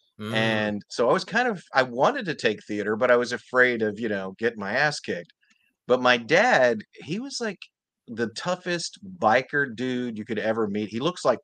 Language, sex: English, male